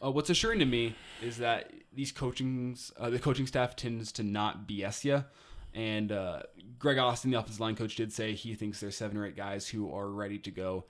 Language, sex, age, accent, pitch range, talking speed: English, male, 20-39, American, 105-120 Hz, 220 wpm